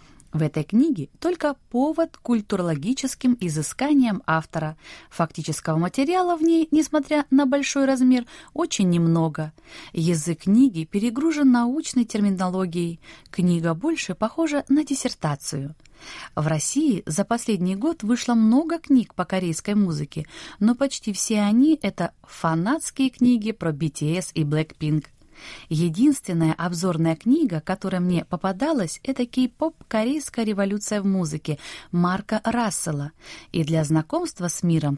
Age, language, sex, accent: 20-39, Russian, female, native